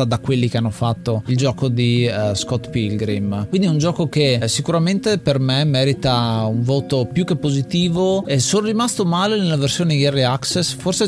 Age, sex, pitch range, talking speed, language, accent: 20-39, male, 120-150 Hz, 185 wpm, Italian, native